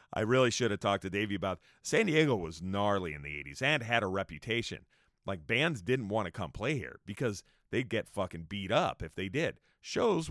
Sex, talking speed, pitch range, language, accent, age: male, 215 wpm, 95-135 Hz, English, American, 40-59